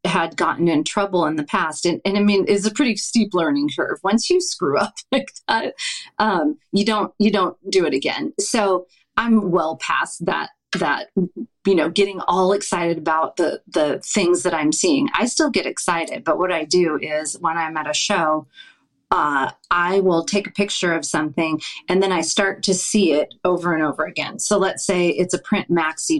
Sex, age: female, 30-49